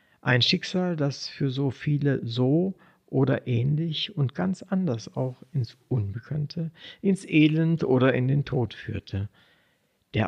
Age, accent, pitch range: 60-79, German, 125-165 Hz